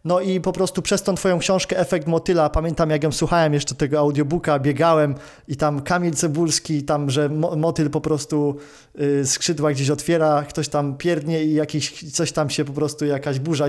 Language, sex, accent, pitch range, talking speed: Polish, male, native, 145-175 Hz, 180 wpm